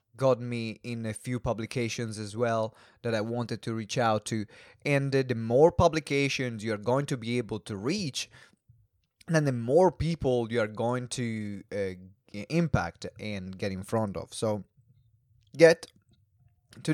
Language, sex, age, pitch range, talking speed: English, male, 20-39, 115-150 Hz, 160 wpm